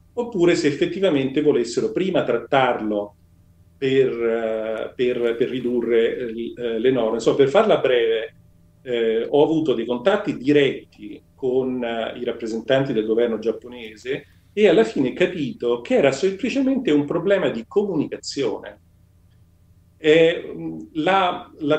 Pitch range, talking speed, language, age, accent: 115-195 Hz, 115 wpm, Italian, 40-59, native